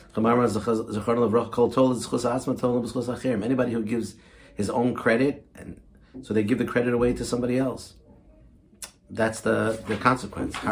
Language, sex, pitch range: English, male, 100-125 Hz